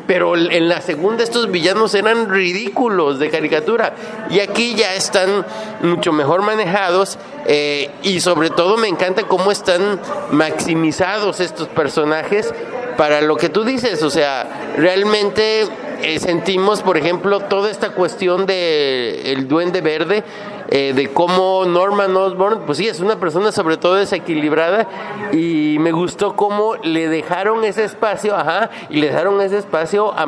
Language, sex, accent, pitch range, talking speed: English, male, Mexican, 160-210 Hz, 150 wpm